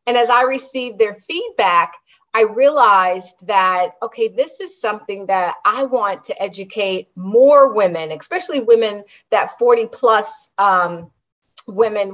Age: 30-49